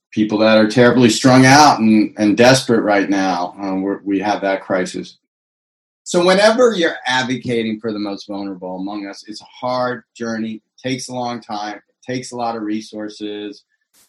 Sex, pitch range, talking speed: male, 110-130 Hz, 175 wpm